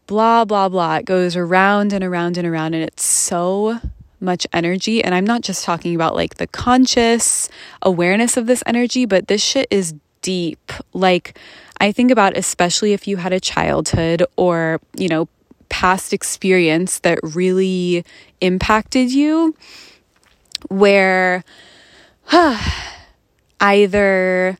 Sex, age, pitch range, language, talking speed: female, 20-39, 170-205 Hz, English, 130 wpm